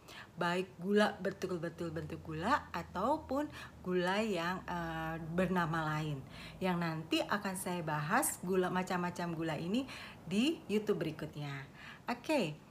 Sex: female